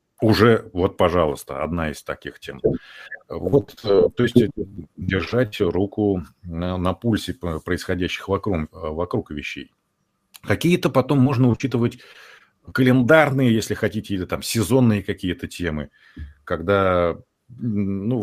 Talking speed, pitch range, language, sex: 110 wpm, 85-120 Hz, Russian, male